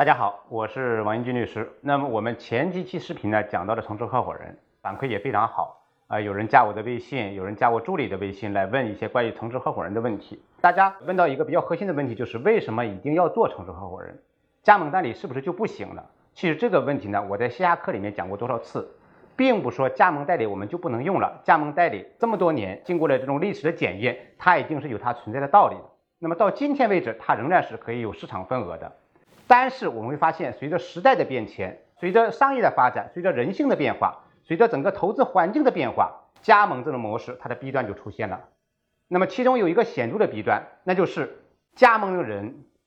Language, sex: Chinese, male